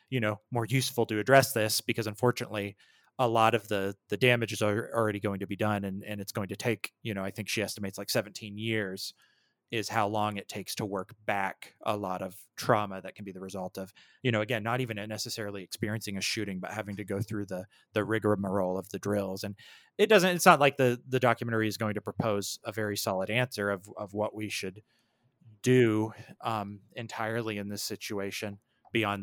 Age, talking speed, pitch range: 30-49, 210 wpm, 100-120 Hz